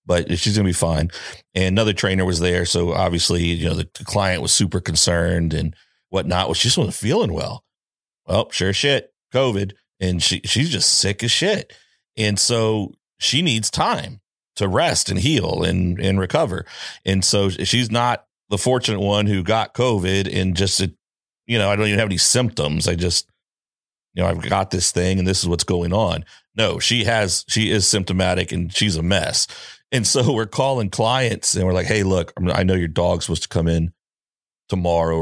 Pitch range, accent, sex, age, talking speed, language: 90-110 Hz, American, male, 40-59, 195 wpm, English